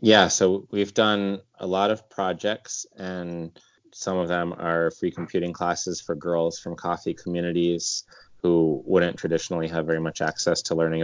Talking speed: 165 wpm